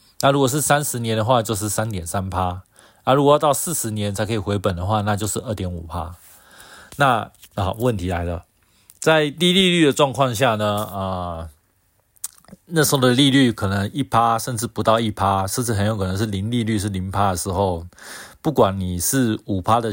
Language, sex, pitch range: Chinese, male, 95-120 Hz